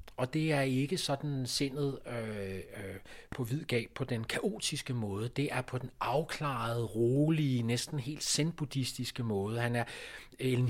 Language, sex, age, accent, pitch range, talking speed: Danish, male, 40-59, native, 115-140 Hz, 150 wpm